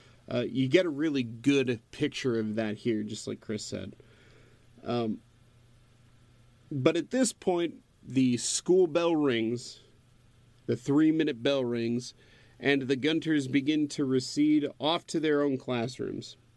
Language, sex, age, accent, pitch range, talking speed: English, male, 40-59, American, 120-150 Hz, 140 wpm